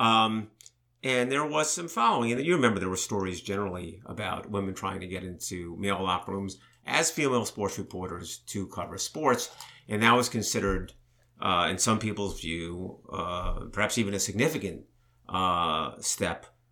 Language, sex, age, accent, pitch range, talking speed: English, male, 50-69, American, 95-125 Hz, 160 wpm